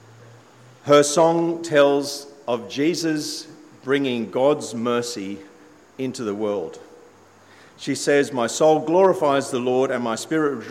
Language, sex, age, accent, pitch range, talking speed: English, male, 50-69, Australian, 115-145 Hz, 120 wpm